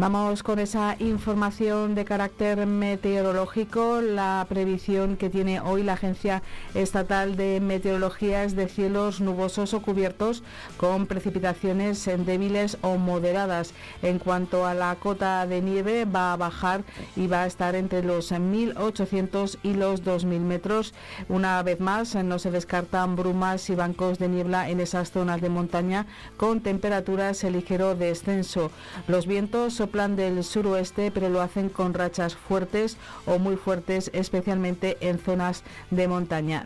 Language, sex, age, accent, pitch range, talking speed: Spanish, female, 50-69, Spanish, 180-195 Hz, 145 wpm